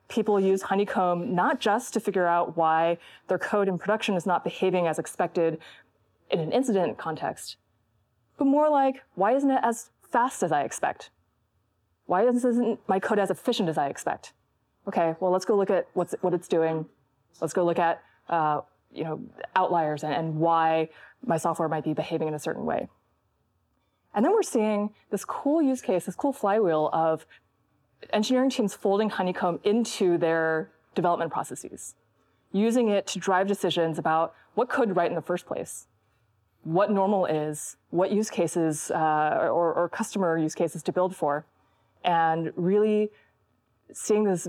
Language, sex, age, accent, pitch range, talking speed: English, female, 20-39, American, 160-205 Hz, 165 wpm